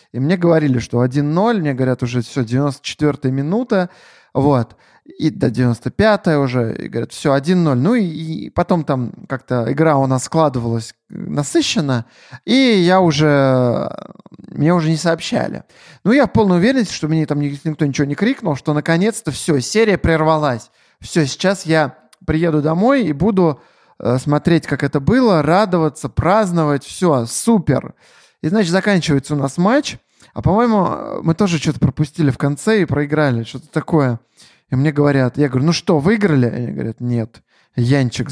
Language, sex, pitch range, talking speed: Russian, male, 130-165 Hz, 155 wpm